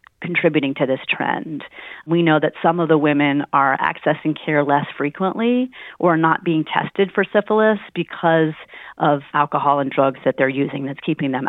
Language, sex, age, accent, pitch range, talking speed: English, female, 40-59, American, 145-180 Hz, 170 wpm